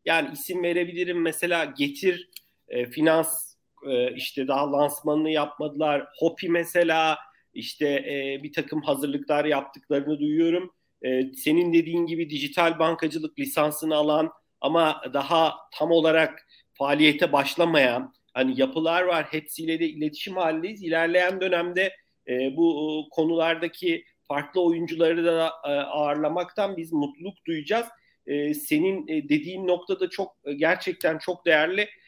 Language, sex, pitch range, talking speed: Turkish, male, 150-190 Hz, 115 wpm